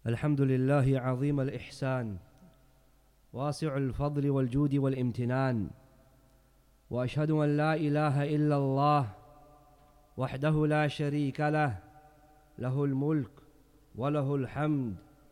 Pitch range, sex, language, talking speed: 130-150 Hz, male, English, 85 wpm